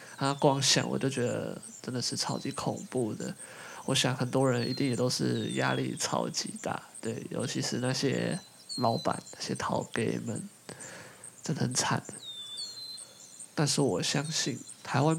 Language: Chinese